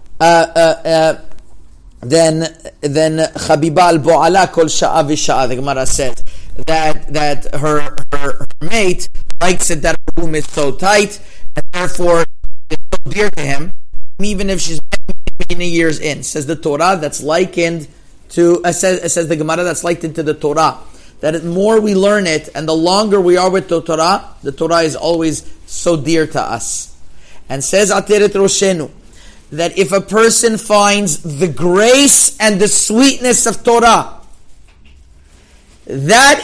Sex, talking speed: male, 145 wpm